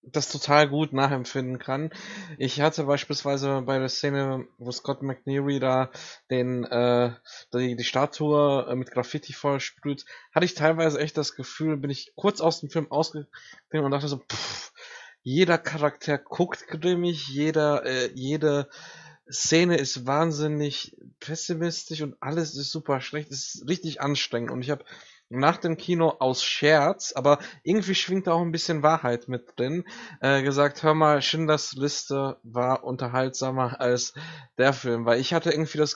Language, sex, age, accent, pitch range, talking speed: German, male, 20-39, German, 130-155 Hz, 155 wpm